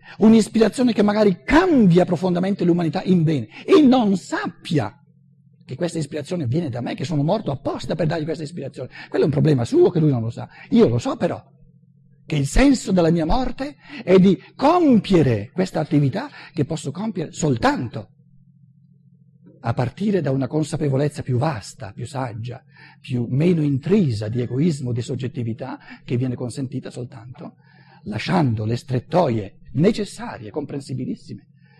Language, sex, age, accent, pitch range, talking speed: Italian, male, 60-79, native, 130-165 Hz, 150 wpm